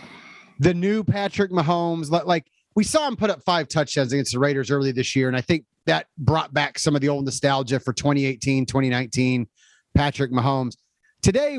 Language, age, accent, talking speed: English, 30-49, American, 180 wpm